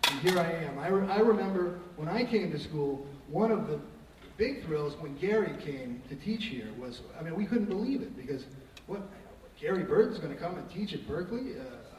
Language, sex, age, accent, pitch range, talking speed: English, male, 40-59, American, 140-180 Hz, 220 wpm